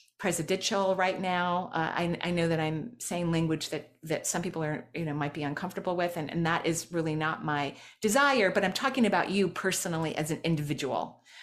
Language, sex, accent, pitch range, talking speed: English, female, American, 160-205 Hz, 205 wpm